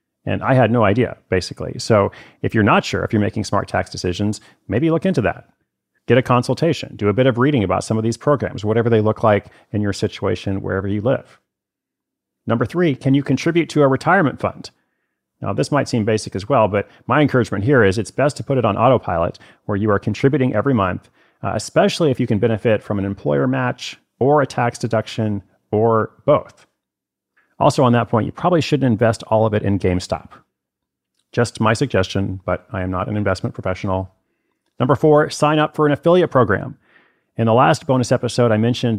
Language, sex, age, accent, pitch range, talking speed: English, male, 40-59, American, 100-130 Hz, 205 wpm